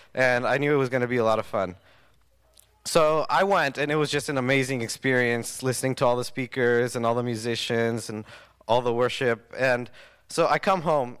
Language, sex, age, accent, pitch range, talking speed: English, male, 20-39, American, 115-140 Hz, 215 wpm